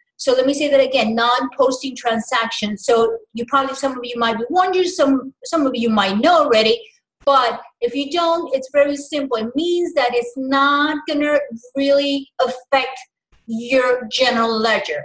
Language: English